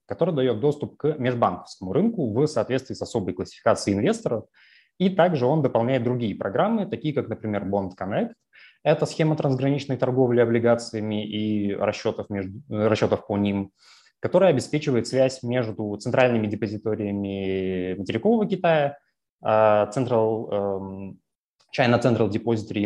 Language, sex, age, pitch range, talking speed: Russian, male, 20-39, 105-135 Hz, 120 wpm